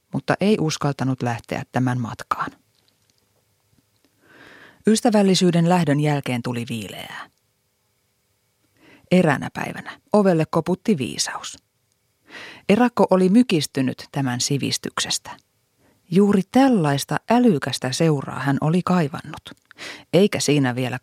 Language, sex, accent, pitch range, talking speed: Finnish, female, native, 130-180 Hz, 90 wpm